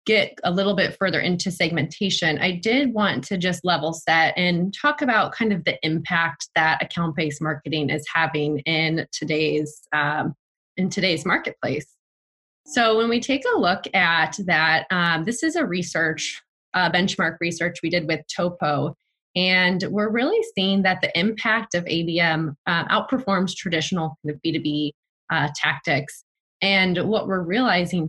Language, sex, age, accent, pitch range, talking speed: English, female, 20-39, American, 160-195 Hz, 155 wpm